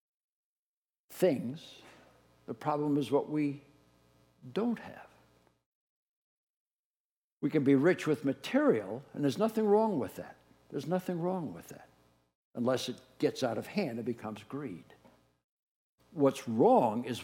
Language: English